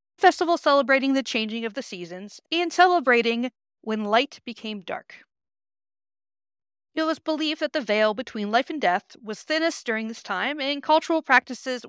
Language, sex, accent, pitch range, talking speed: English, female, American, 205-315 Hz, 155 wpm